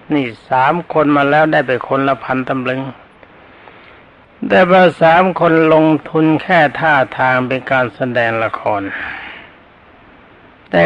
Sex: male